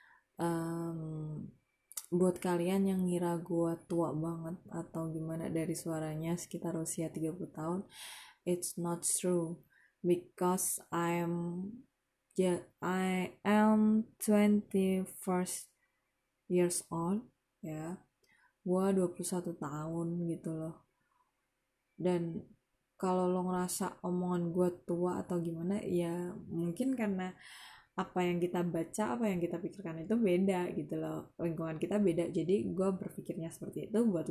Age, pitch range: 20-39, 165-185 Hz